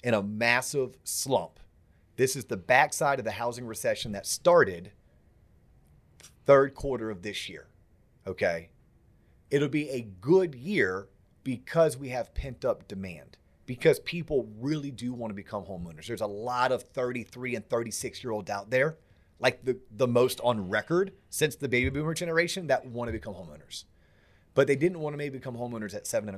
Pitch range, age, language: 100-135 Hz, 30-49, English